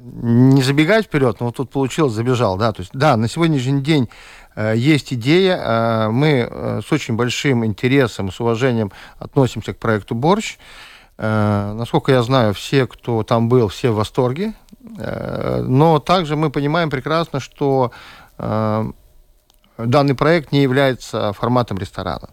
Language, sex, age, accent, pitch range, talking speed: Ukrainian, male, 40-59, native, 115-150 Hz, 150 wpm